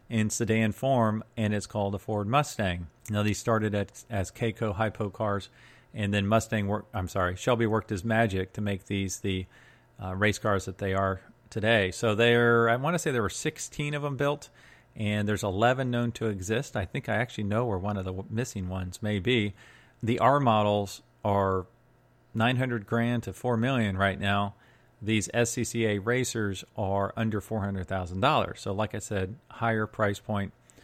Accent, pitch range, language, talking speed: American, 100-120 Hz, English, 180 wpm